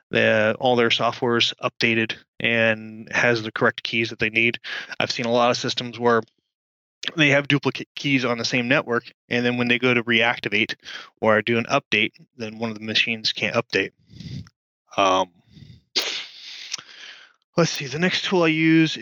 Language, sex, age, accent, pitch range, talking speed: English, male, 20-39, American, 110-130 Hz, 165 wpm